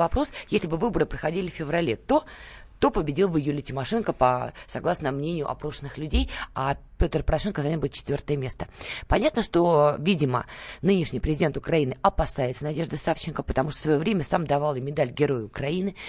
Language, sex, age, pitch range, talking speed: Russian, female, 20-39, 145-200 Hz, 170 wpm